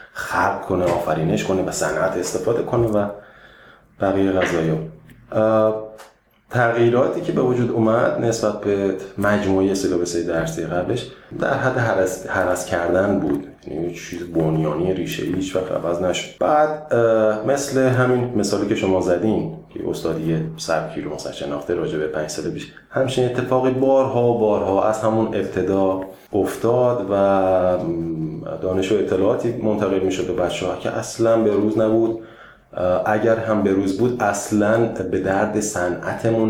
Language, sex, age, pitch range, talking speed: Persian, male, 30-49, 90-115 Hz, 140 wpm